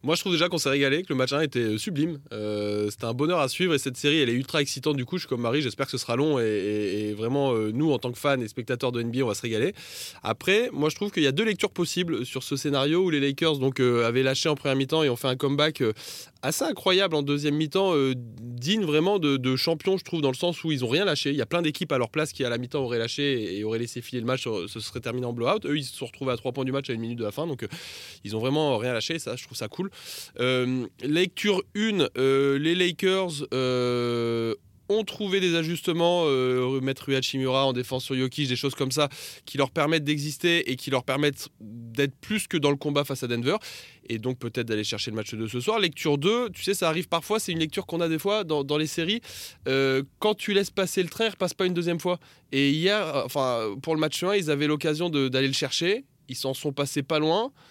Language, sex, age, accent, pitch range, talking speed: French, male, 20-39, French, 125-165 Hz, 265 wpm